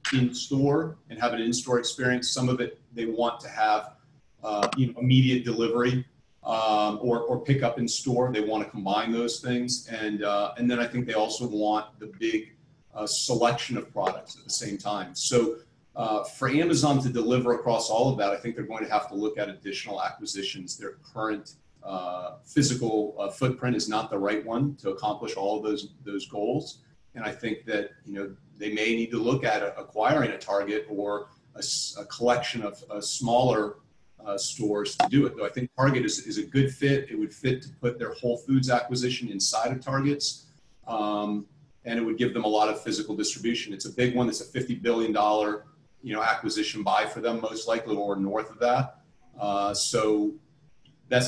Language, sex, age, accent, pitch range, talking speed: English, male, 40-59, American, 105-130 Hz, 200 wpm